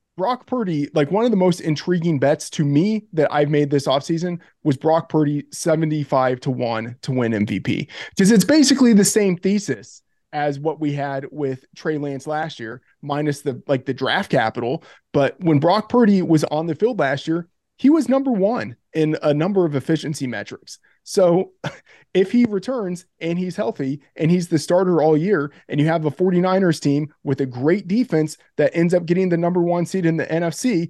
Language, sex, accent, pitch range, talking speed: English, male, American, 145-185 Hz, 195 wpm